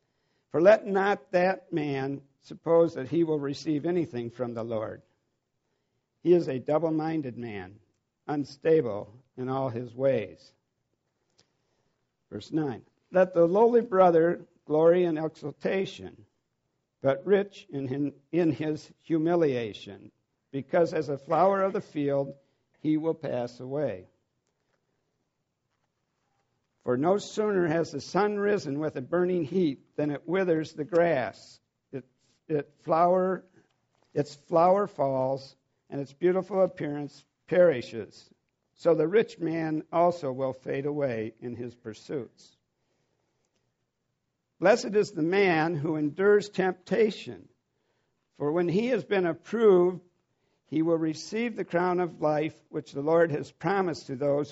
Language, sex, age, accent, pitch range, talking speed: English, male, 60-79, American, 135-175 Hz, 120 wpm